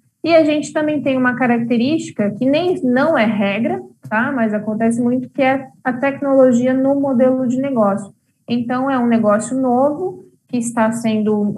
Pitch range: 215-260 Hz